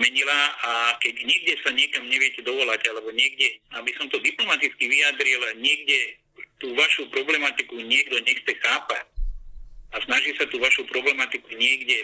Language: Slovak